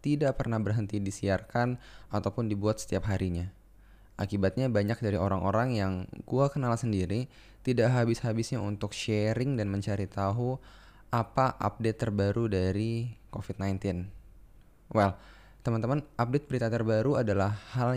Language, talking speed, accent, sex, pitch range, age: Indonesian, 115 wpm, native, male, 100-125 Hz, 10-29